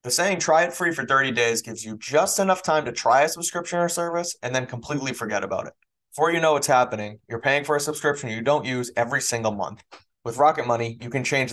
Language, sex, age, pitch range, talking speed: English, male, 20-39, 115-145 Hz, 245 wpm